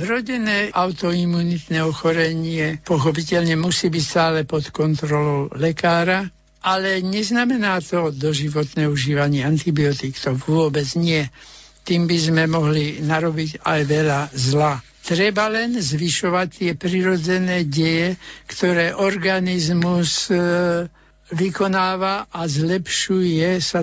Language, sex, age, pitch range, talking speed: Slovak, male, 60-79, 155-185 Hz, 100 wpm